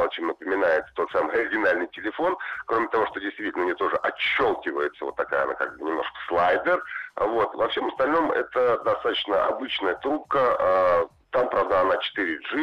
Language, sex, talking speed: Russian, male, 145 wpm